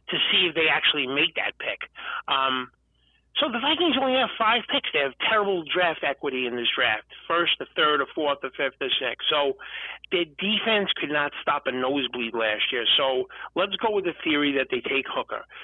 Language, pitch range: English, 140-200 Hz